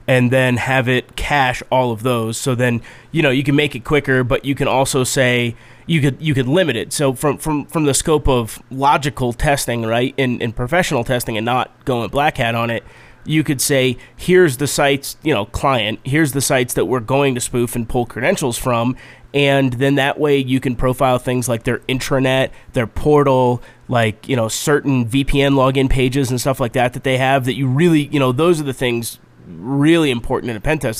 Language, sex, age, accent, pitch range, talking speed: English, male, 30-49, American, 125-140 Hz, 220 wpm